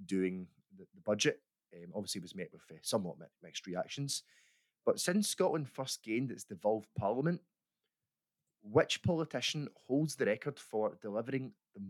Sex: male